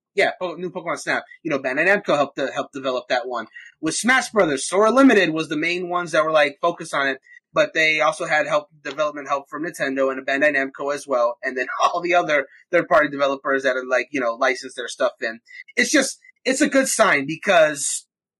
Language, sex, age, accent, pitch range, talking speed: English, male, 30-49, American, 140-200 Hz, 220 wpm